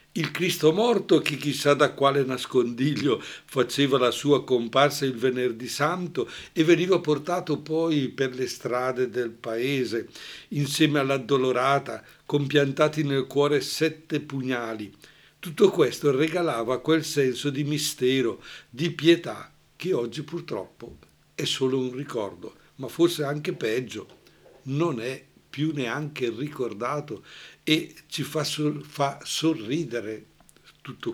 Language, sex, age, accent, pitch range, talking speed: Italian, male, 60-79, native, 130-150 Hz, 120 wpm